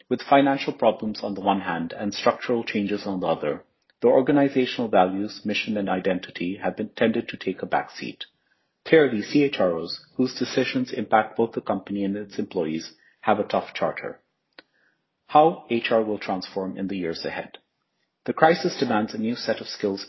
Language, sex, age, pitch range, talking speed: English, male, 40-59, 100-130 Hz, 170 wpm